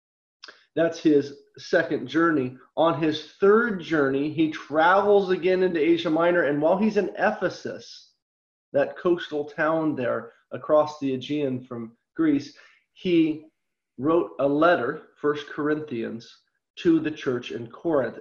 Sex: male